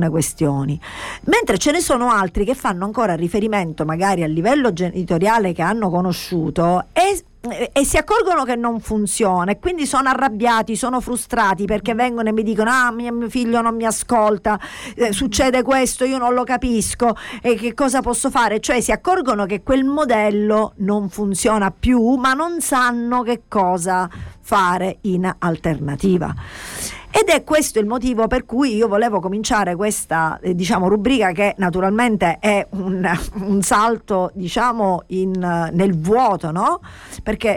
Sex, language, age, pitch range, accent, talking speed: female, Italian, 50-69, 180-240 Hz, native, 155 wpm